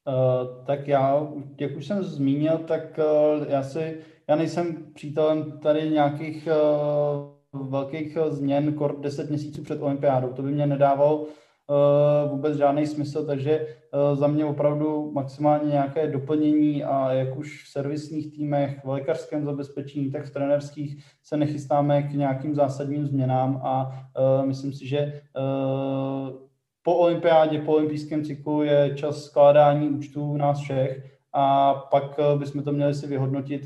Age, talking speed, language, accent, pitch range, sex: 20-39, 150 wpm, Czech, native, 140-165 Hz, male